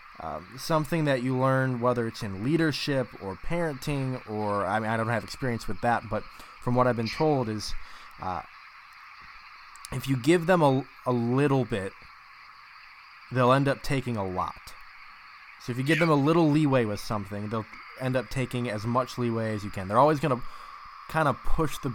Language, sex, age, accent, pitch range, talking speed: English, male, 20-39, American, 115-145 Hz, 190 wpm